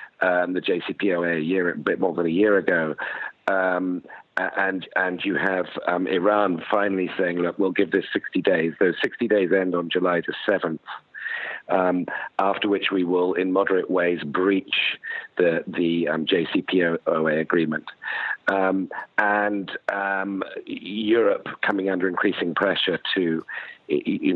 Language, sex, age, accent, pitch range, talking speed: English, male, 50-69, British, 85-95 Hz, 145 wpm